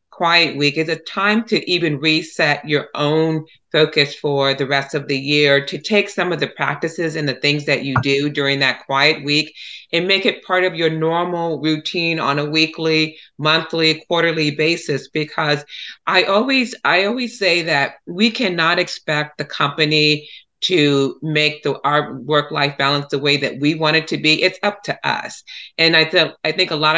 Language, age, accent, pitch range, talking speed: English, 30-49, American, 145-170 Hz, 190 wpm